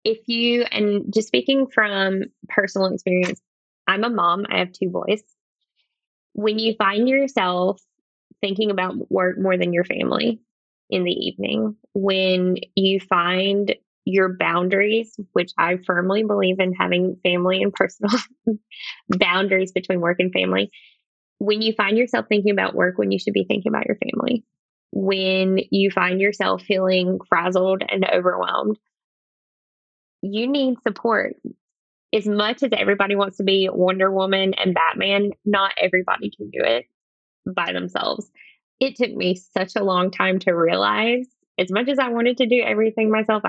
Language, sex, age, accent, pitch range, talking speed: English, female, 10-29, American, 185-225 Hz, 150 wpm